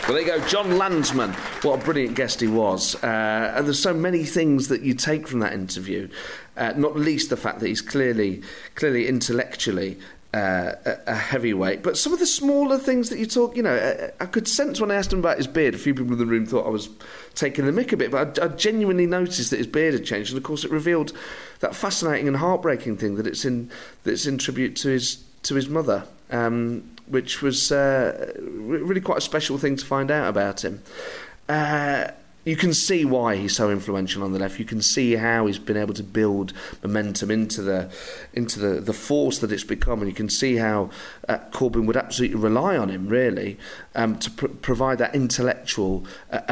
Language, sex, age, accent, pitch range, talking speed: English, male, 40-59, British, 110-150 Hz, 220 wpm